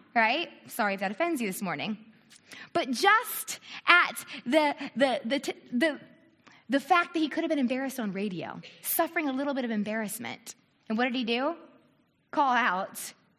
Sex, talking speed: female, 155 wpm